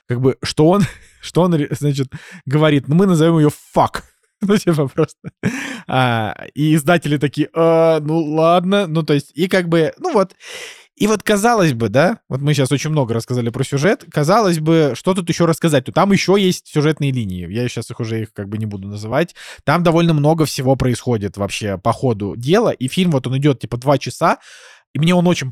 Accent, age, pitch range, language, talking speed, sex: native, 20-39, 120-165 Hz, Russian, 200 wpm, male